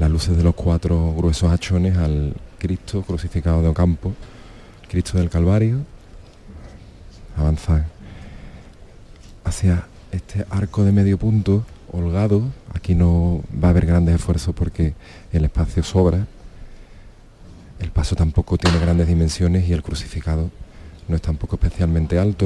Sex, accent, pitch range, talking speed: male, Spanish, 80-100 Hz, 130 wpm